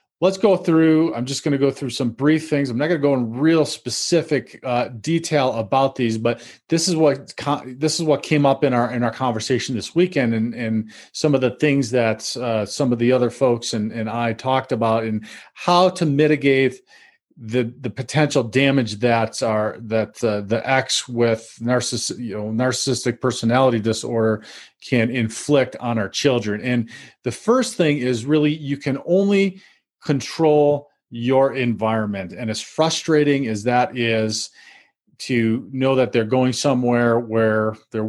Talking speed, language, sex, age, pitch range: 180 wpm, English, male, 40-59, 115-145 Hz